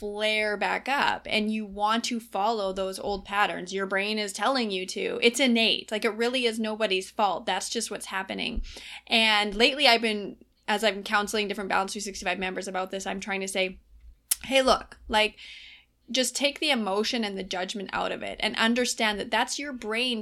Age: 20-39